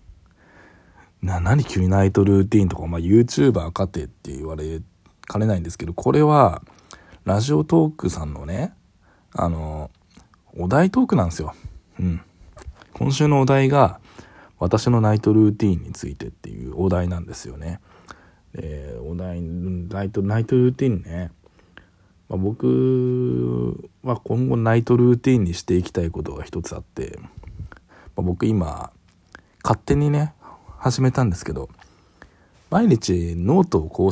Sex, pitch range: male, 85-120 Hz